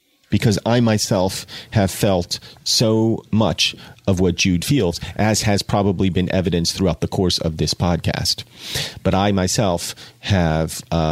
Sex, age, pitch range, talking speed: male, 40-59, 90-120 Hz, 140 wpm